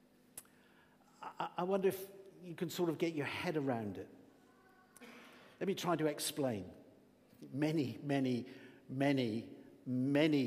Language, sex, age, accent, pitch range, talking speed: English, male, 50-69, British, 115-135 Hz, 120 wpm